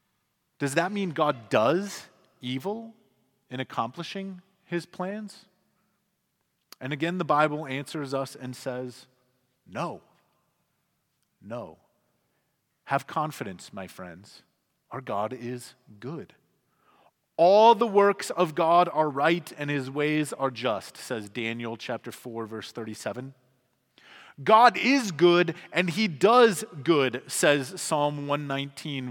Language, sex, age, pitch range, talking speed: English, male, 30-49, 130-175 Hz, 115 wpm